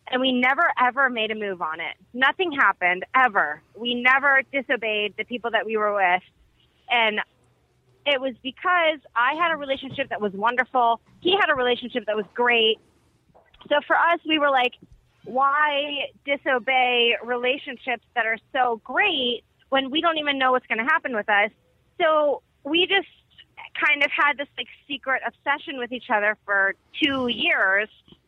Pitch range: 225-285 Hz